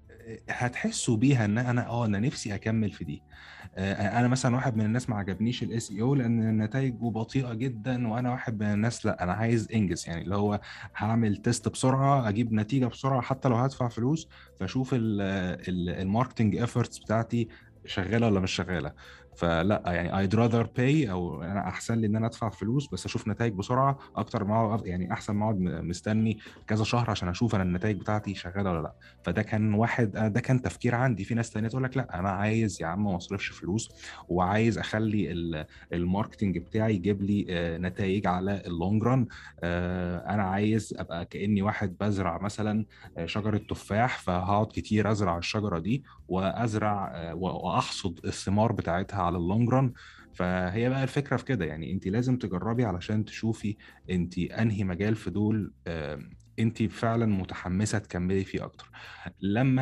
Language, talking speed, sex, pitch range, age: Arabic, 160 wpm, male, 95-120 Hz, 20-39